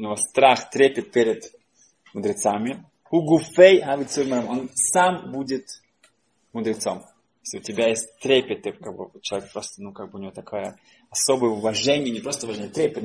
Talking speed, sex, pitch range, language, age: 140 wpm, male, 115-150 Hz, Russian, 20-39